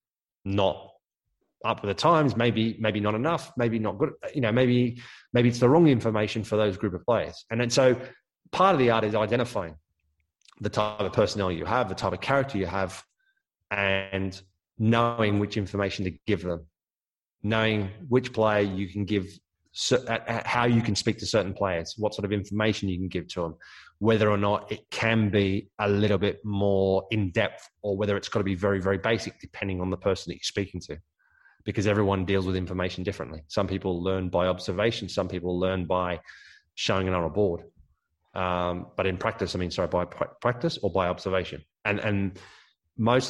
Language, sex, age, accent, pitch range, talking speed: English, male, 20-39, British, 95-115 Hz, 195 wpm